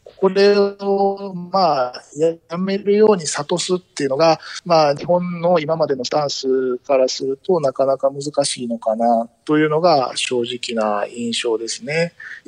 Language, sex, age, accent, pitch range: Japanese, male, 40-59, native, 125-180 Hz